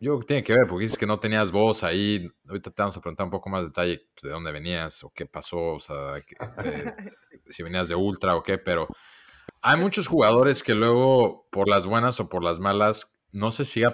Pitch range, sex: 85-110 Hz, male